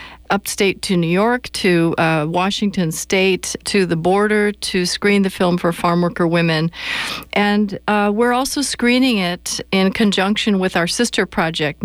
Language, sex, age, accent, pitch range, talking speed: English, female, 50-69, American, 170-205 Hz, 150 wpm